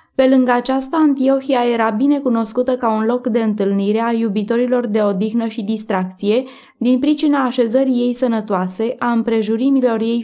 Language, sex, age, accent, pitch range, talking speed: Romanian, female, 20-39, native, 220-260 Hz, 150 wpm